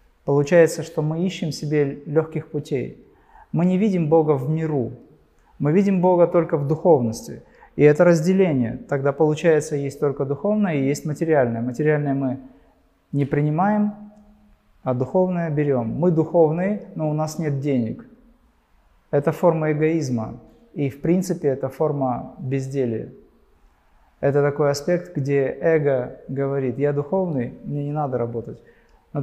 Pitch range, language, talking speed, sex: 140-170 Hz, Russian, 135 wpm, male